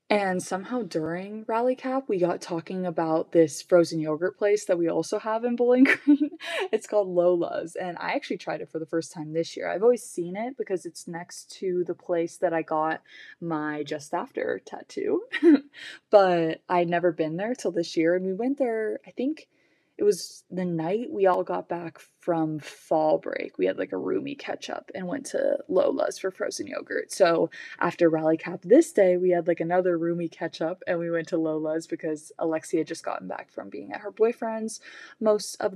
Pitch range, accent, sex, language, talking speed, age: 165-220 Hz, American, female, English, 200 wpm, 20-39